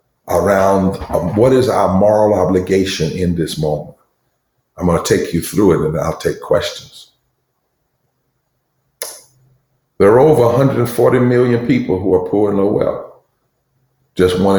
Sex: male